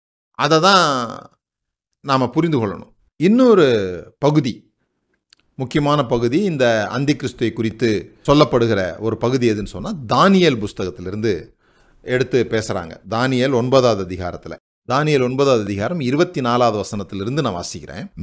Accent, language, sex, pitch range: native, Tamil, male, 115-160 Hz